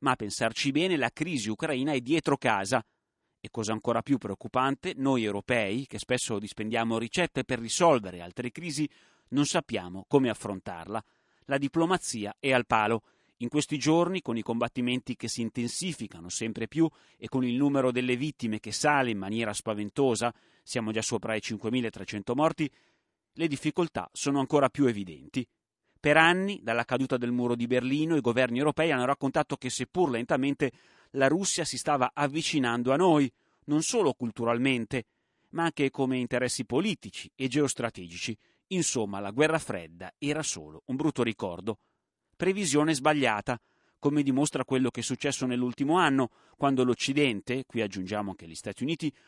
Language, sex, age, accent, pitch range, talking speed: Italian, male, 30-49, native, 115-145 Hz, 155 wpm